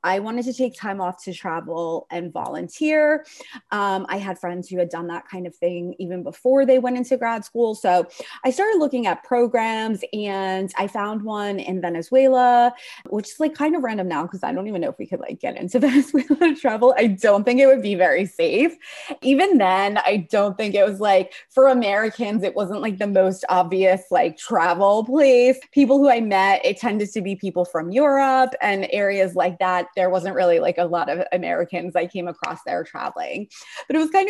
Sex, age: female, 30-49